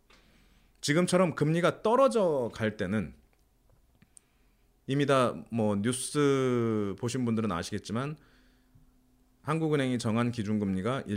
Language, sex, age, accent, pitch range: Korean, male, 30-49, native, 95-145 Hz